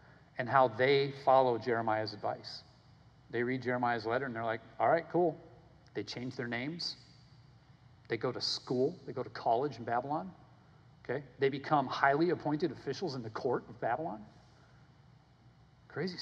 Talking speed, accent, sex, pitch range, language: 155 wpm, American, male, 125-165 Hz, English